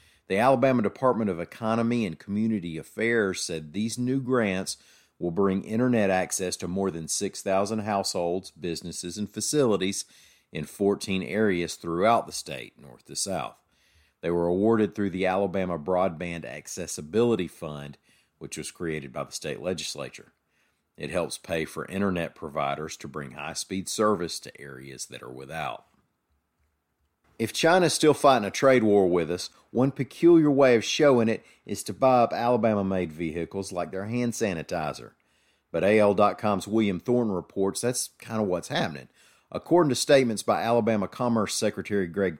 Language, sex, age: English, male, 50-69